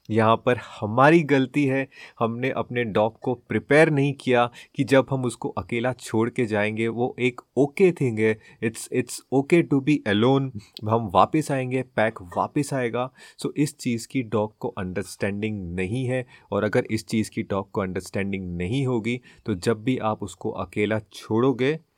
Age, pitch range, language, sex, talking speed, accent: 30-49, 105-135 Hz, Hindi, male, 175 wpm, native